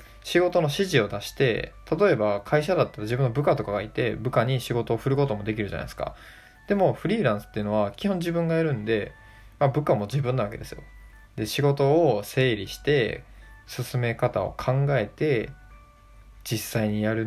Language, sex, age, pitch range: Japanese, male, 20-39, 105-135 Hz